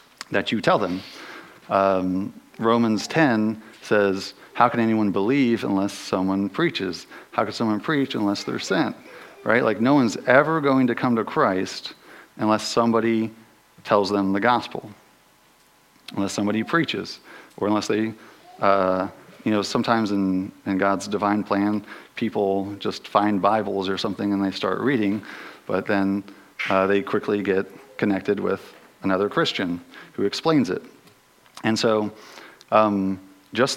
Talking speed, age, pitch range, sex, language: 140 wpm, 50-69, 95-110 Hz, male, English